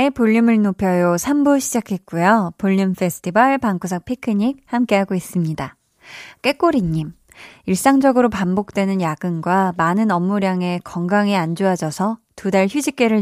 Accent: native